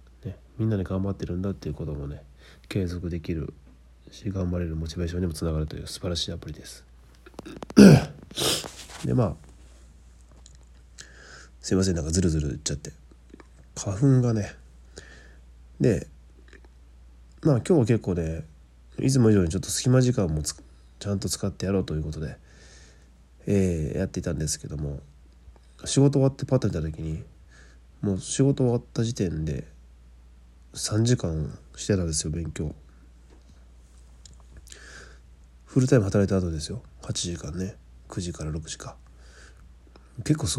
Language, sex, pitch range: Japanese, male, 65-95 Hz